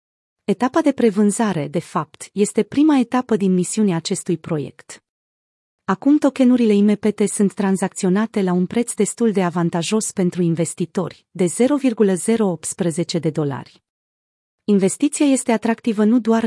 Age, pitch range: 30-49, 175-220 Hz